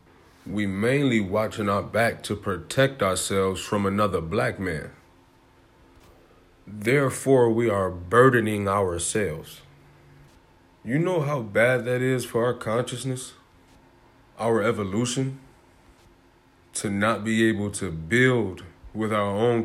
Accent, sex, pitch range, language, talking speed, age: American, male, 90-115 Hz, English, 115 wpm, 20-39